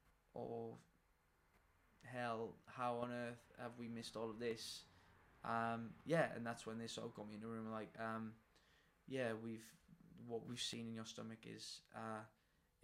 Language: English